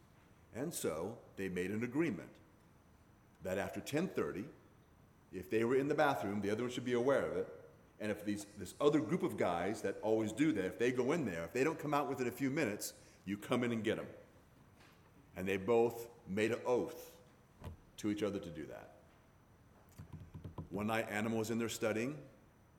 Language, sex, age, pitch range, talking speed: English, male, 40-59, 95-125 Hz, 190 wpm